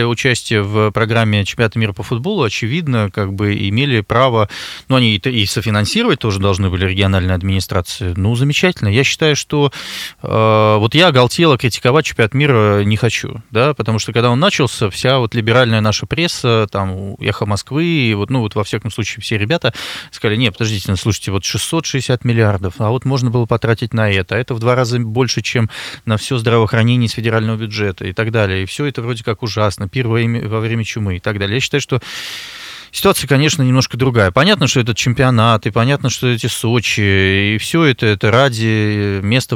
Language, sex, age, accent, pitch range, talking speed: Russian, male, 20-39, native, 105-125 Hz, 185 wpm